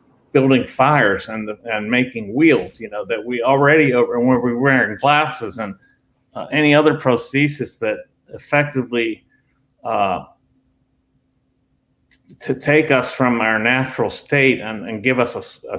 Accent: American